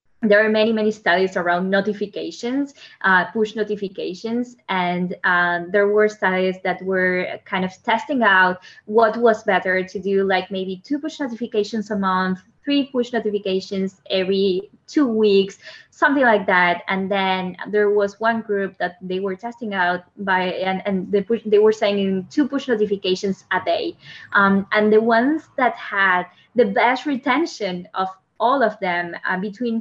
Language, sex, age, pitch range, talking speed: English, female, 20-39, 185-230 Hz, 165 wpm